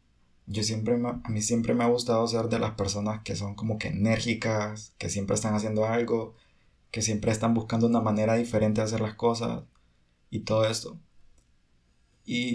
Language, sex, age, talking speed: Spanish, male, 20-39, 180 wpm